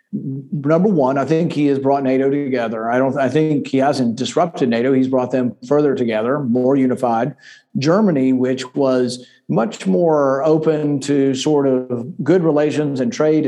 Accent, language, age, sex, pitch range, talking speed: American, English, 50-69, male, 130-150 Hz, 165 wpm